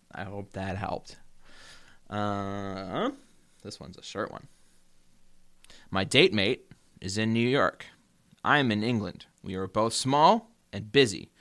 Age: 20-39